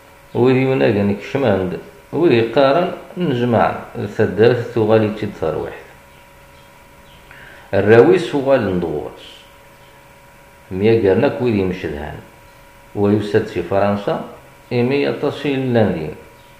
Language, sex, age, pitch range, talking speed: French, male, 50-69, 95-125 Hz, 70 wpm